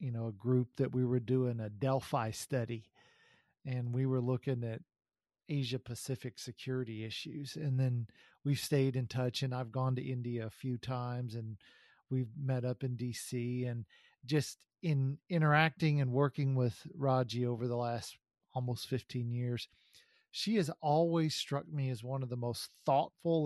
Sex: male